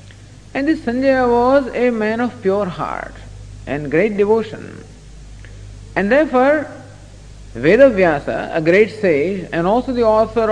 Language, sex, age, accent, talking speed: English, male, 50-69, Indian, 125 wpm